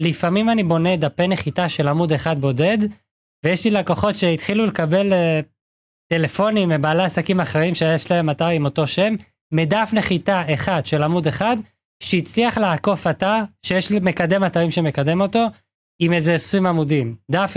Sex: male